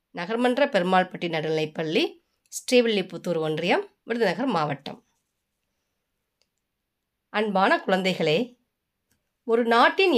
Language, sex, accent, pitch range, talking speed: Tamil, female, native, 180-255 Hz, 70 wpm